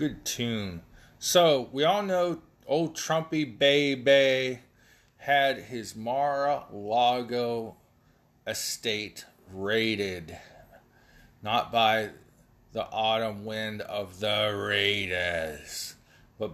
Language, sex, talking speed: English, male, 85 wpm